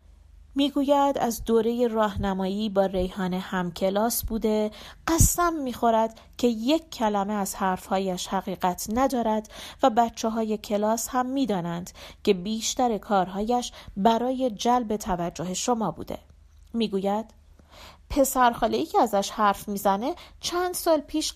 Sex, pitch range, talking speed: female, 185-245 Hz, 110 wpm